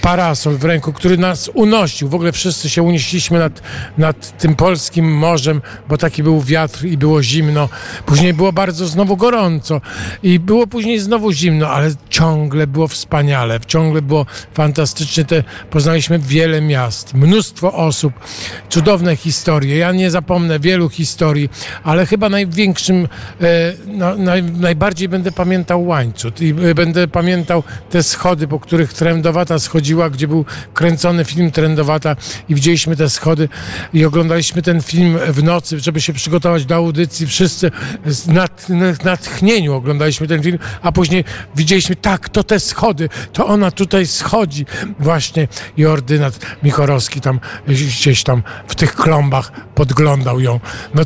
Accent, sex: native, male